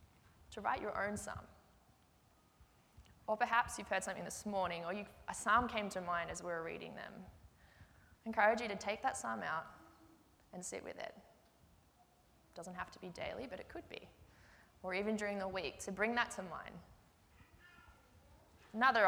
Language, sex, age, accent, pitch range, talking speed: English, female, 20-39, Australian, 175-210 Hz, 175 wpm